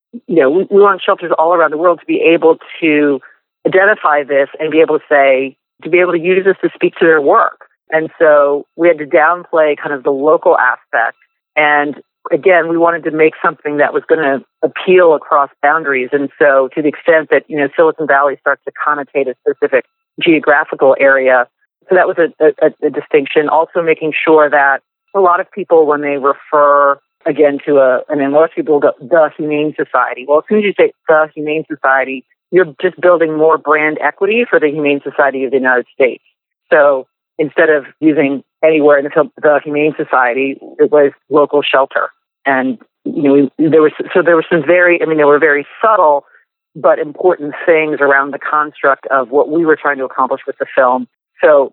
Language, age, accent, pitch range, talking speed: English, 40-59, American, 140-165 Hz, 205 wpm